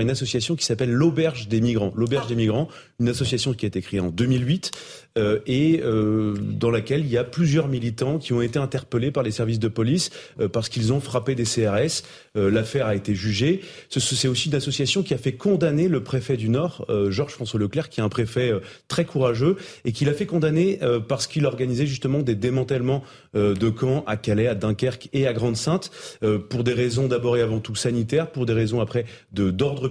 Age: 30-49